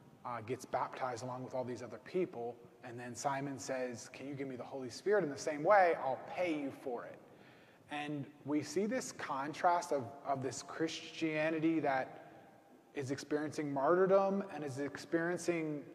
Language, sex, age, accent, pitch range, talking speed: English, male, 20-39, American, 135-165 Hz, 170 wpm